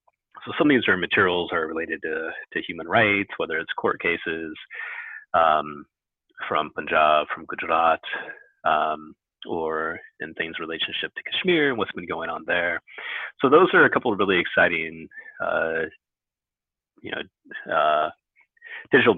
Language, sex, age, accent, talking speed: English, male, 30-49, American, 150 wpm